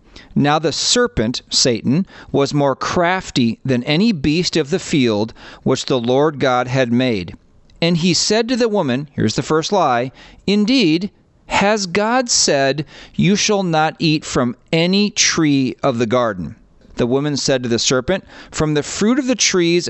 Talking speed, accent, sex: 165 wpm, American, male